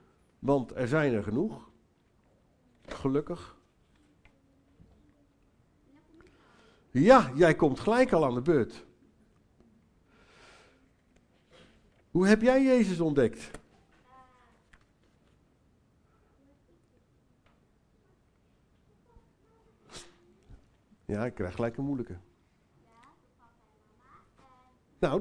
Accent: Dutch